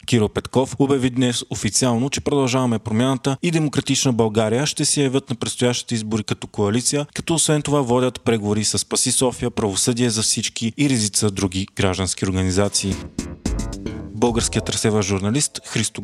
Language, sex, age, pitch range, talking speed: Bulgarian, male, 20-39, 105-130 Hz, 145 wpm